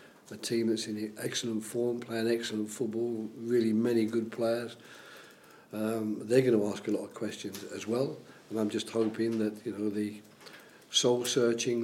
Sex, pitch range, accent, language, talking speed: male, 110-120 Hz, British, English, 165 wpm